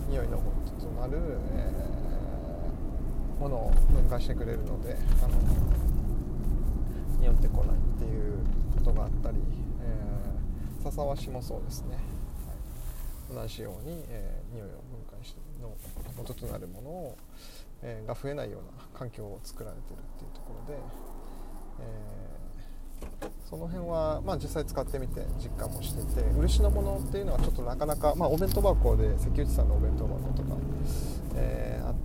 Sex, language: male, Japanese